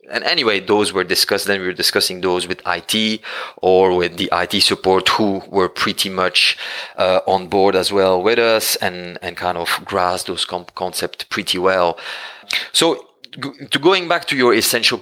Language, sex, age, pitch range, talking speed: English, male, 30-49, 95-110 Hz, 180 wpm